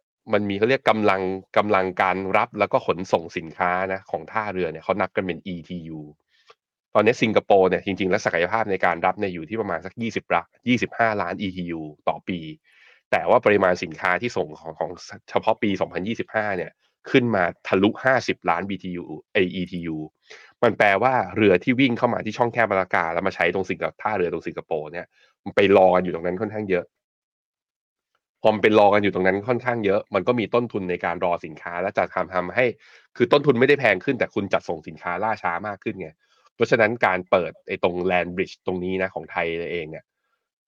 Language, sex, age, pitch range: Thai, male, 20-39, 90-105 Hz